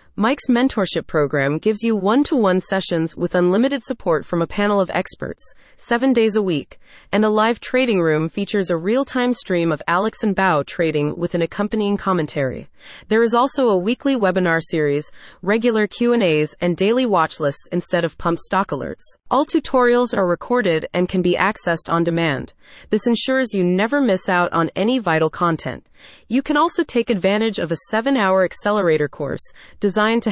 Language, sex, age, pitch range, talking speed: English, female, 30-49, 170-225 Hz, 170 wpm